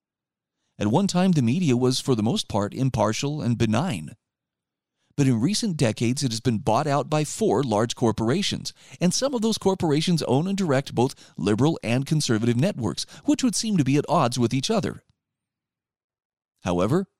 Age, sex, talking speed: 40-59, male, 175 wpm